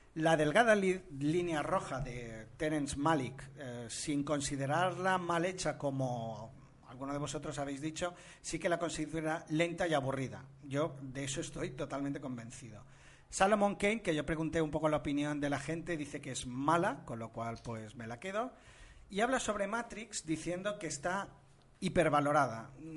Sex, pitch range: male, 135-165 Hz